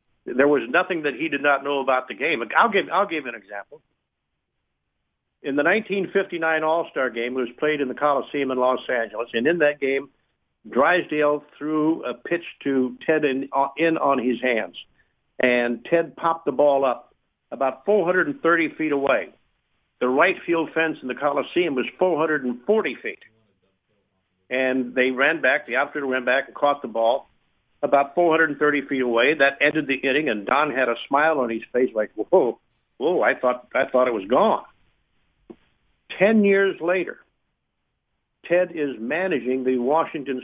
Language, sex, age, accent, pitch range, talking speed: English, male, 60-79, American, 125-160 Hz, 165 wpm